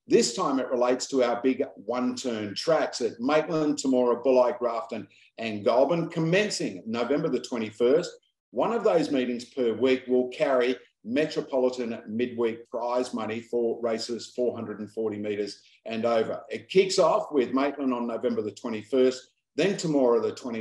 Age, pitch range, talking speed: 50-69, 115-140 Hz, 145 wpm